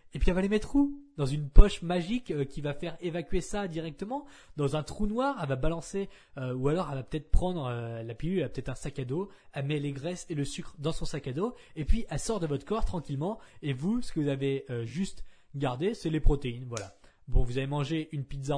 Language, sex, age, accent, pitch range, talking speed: French, male, 20-39, French, 125-165 Hz, 260 wpm